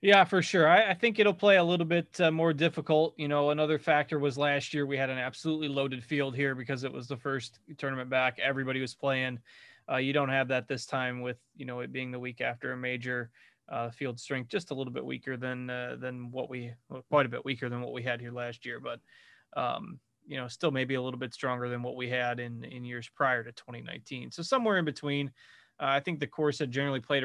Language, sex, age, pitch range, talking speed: English, male, 20-39, 125-145 Hz, 245 wpm